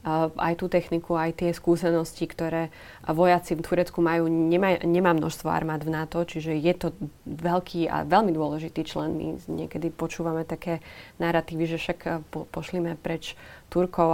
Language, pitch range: Slovak, 155-170 Hz